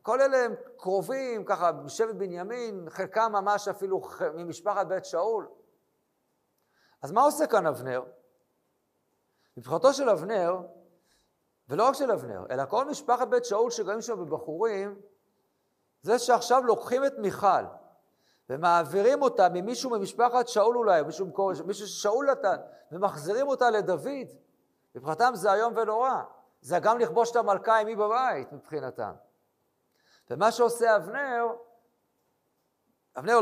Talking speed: 120 wpm